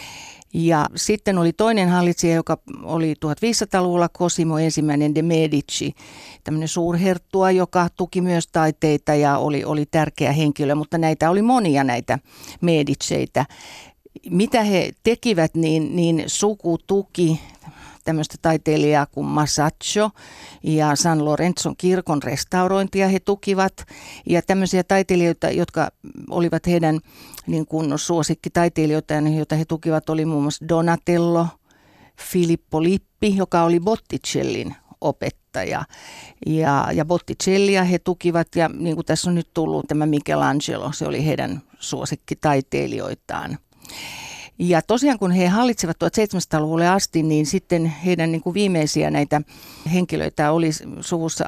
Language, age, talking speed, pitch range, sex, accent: Finnish, 50-69, 115 wpm, 155-180 Hz, female, native